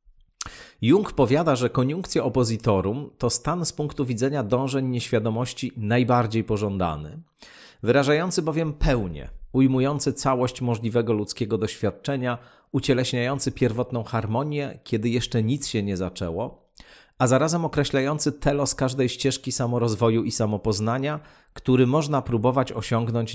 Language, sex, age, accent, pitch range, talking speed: Polish, male, 40-59, native, 110-140 Hz, 115 wpm